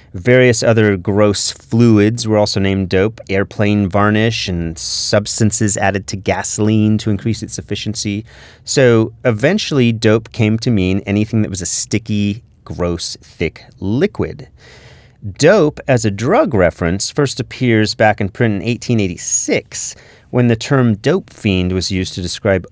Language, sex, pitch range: English, male, 95-125 Hz